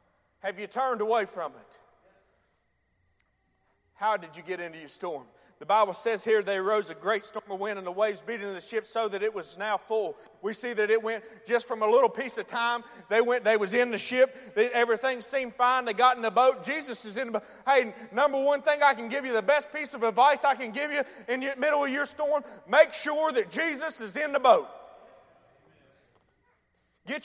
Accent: American